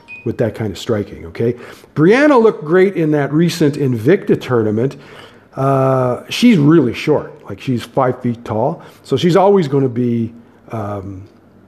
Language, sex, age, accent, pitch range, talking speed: English, male, 50-69, American, 125-185 Hz, 155 wpm